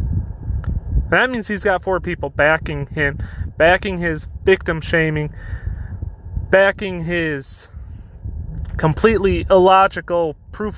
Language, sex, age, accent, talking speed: English, male, 20-39, American, 90 wpm